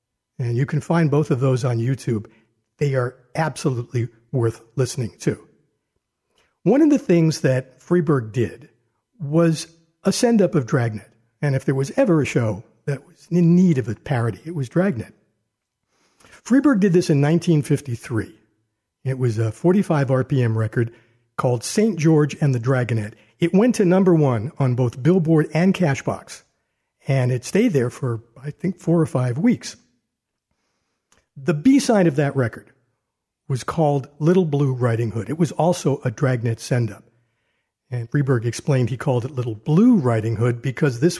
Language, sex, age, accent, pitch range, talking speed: English, male, 60-79, American, 120-165 Hz, 160 wpm